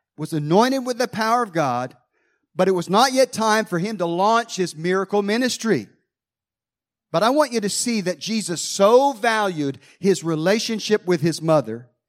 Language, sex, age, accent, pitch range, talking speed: English, male, 40-59, American, 140-195 Hz, 175 wpm